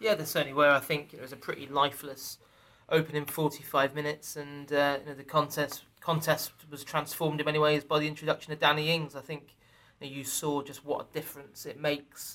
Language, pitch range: English, 135-150 Hz